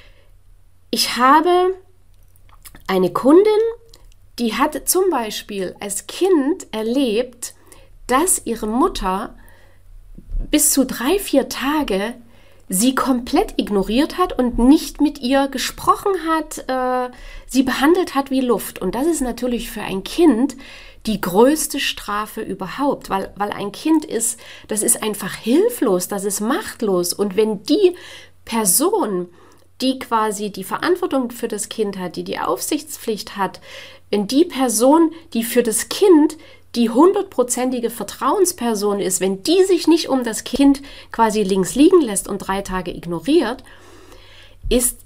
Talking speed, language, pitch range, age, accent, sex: 135 wpm, German, 200-300 Hz, 30-49, German, female